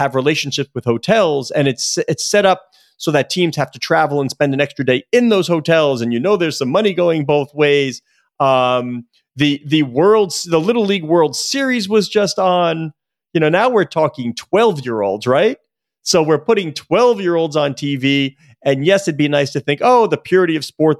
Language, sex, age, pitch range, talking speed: English, male, 30-49, 140-210 Hz, 195 wpm